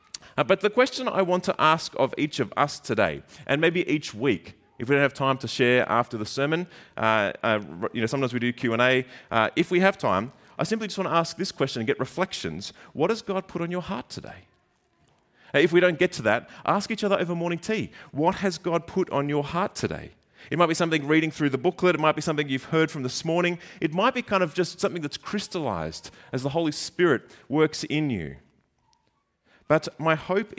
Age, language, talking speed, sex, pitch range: 30-49, English, 225 wpm, male, 115-170 Hz